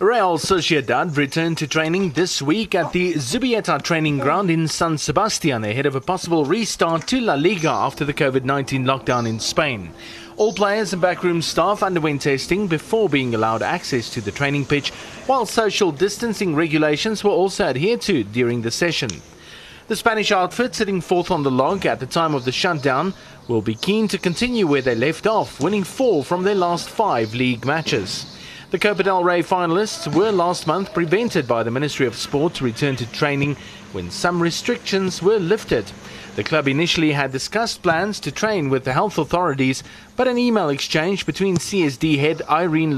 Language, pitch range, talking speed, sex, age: English, 140-195 Hz, 180 wpm, male, 30-49